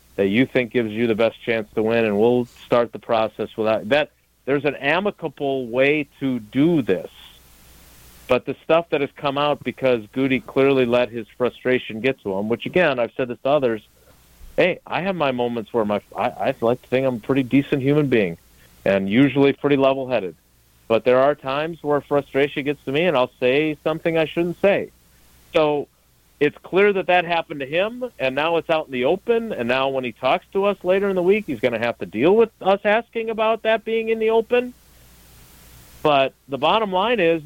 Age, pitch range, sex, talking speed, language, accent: 50-69, 115-170 Hz, male, 210 wpm, English, American